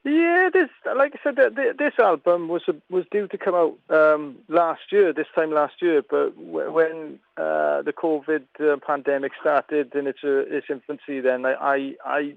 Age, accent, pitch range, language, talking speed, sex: 40-59, British, 130-155 Hz, English, 175 wpm, male